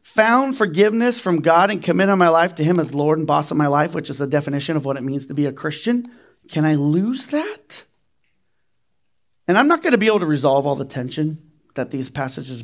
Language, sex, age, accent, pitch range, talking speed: English, male, 40-59, American, 135-190 Hz, 230 wpm